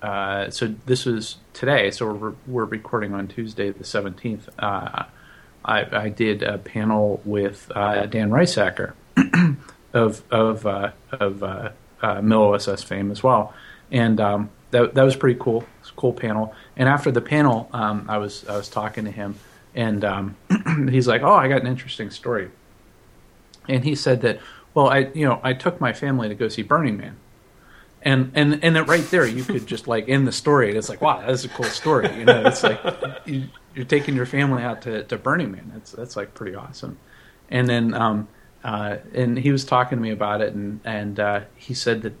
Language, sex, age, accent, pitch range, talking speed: English, male, 40-59, American, 105-130 Hz, 205 wpm